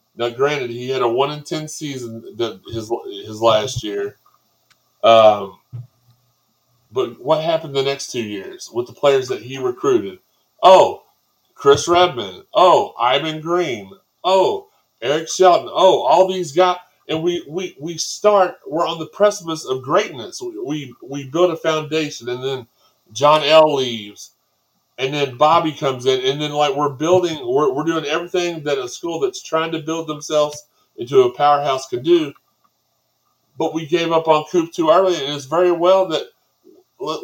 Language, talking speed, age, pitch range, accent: English, 170 wpm, 30-49, 135-185 Hz, American